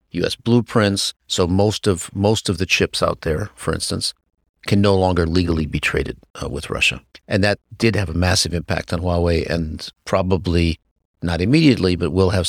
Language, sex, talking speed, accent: English, male, 185 wpm, American